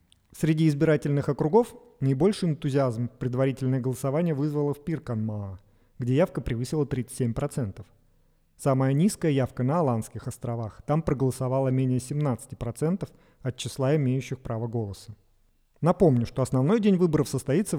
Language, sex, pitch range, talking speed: Russian, male, 120-145 Hz, 120 wpm